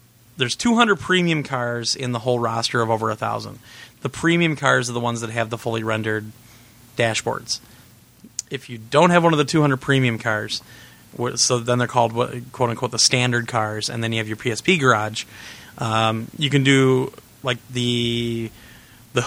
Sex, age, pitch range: male, 30-49, 120-150 Hz